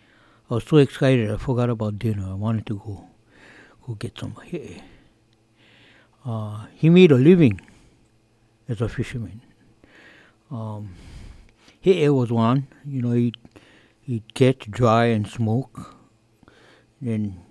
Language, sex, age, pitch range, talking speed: English, male, 60-79, 110-135 Hz, 125 wpm